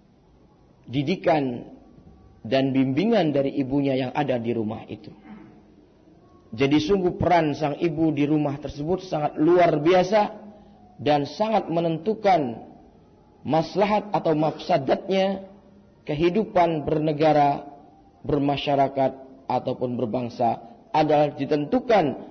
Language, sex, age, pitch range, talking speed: Indonesian, male, 40-59, 135-180 Hz, 90 wpm